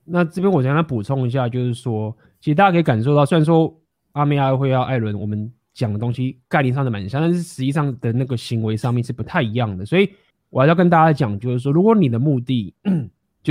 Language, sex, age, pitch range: Chinese, male, 20-39, 115-155 Hz